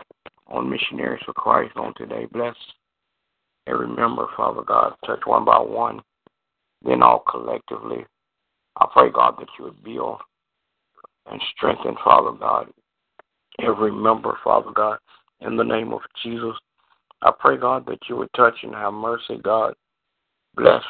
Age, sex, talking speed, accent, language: 60-79, male, 145 wpm, American, English